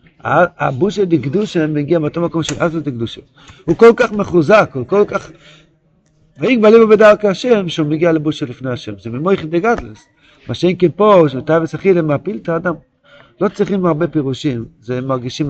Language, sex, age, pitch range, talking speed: Hebrew, male, 50-69, 135-175 Hz, 170 wpm